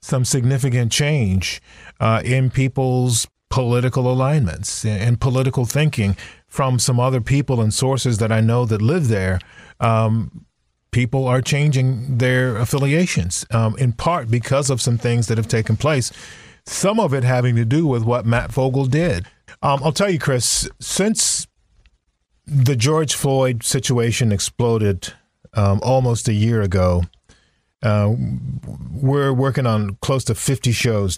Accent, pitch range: American, 105-130 Hz